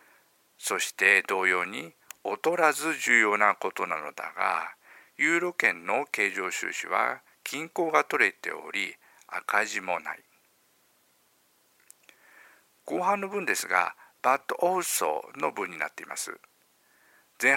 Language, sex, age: Japanese, male, 50-69